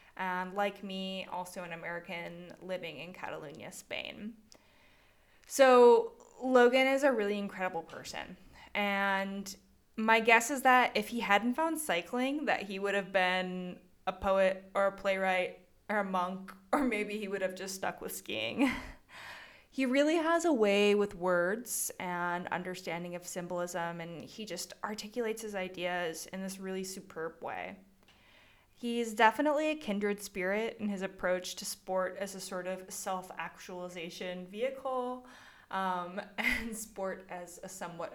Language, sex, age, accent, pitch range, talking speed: English, female, 20-39, American, 185-235 Hz, 145 wpm